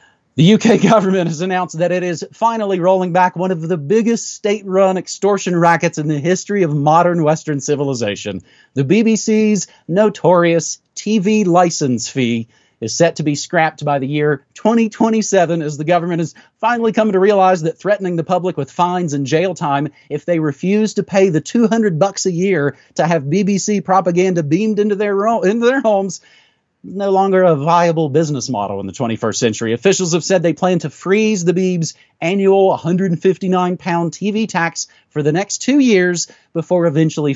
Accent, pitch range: American, 150-195 Hz